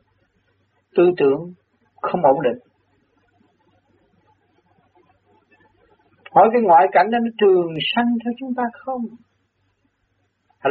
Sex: male